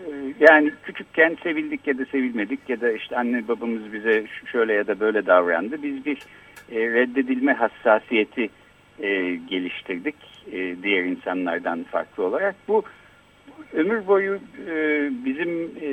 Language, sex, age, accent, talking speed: Turkish, male, 60-79, native, 115 wpm